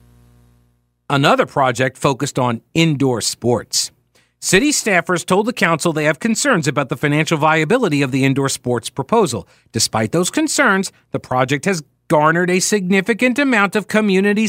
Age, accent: 50-69, American